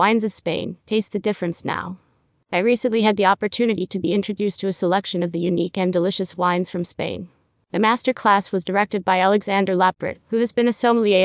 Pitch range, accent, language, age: 180-210 Hz, American, English, 30-49